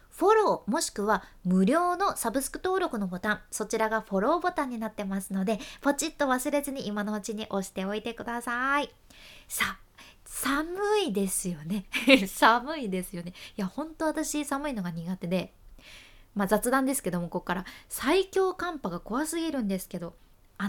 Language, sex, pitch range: Japanese, female, 200-290 Hz